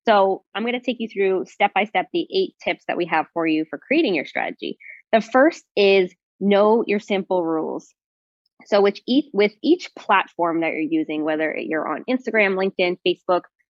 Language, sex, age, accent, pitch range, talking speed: English, female, 20-39, American, 165-210 Hz, 195 wpm